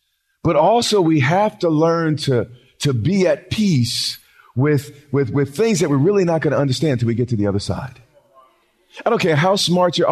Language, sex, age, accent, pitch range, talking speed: English, male, 40-59, American, 125-165 Hz, 215 wpm